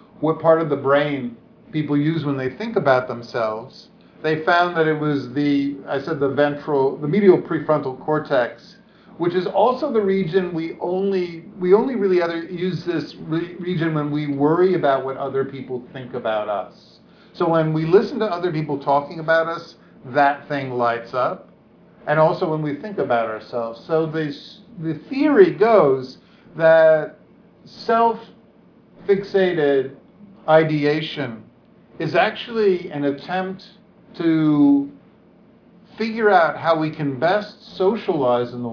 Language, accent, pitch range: English, American, 130-185 Hz